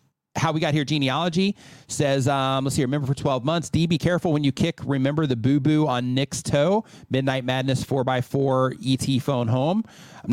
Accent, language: American, English